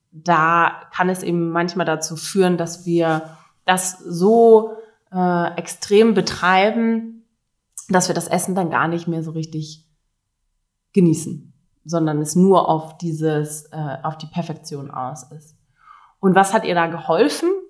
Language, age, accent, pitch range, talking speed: English, 20-39, German, 165-200 Hz, 140 wpm